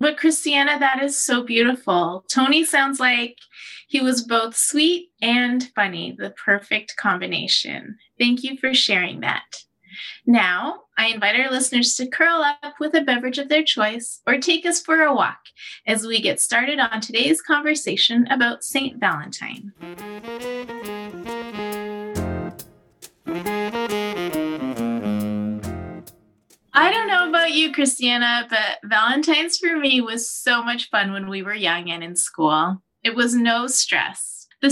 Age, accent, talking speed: 30-49, American, 135 wpm